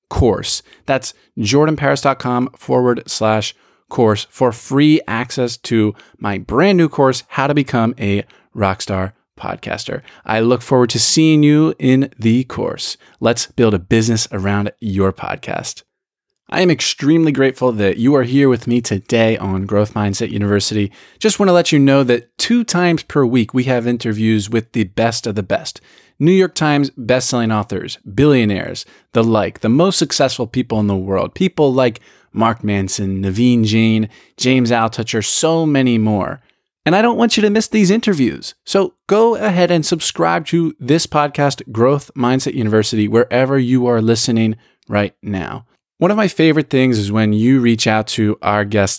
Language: English